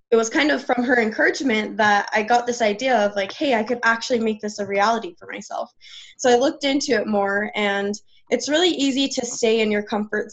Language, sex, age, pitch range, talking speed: English, female, 10-29, 205-240 Hz, 225 wpm